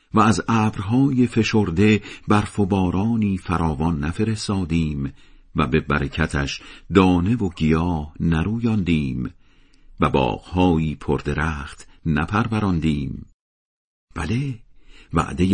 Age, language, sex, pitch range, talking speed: 50-69, Persian, male, 80-105 Hz, 85 wpm